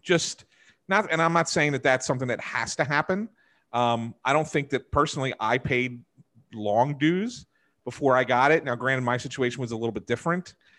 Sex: male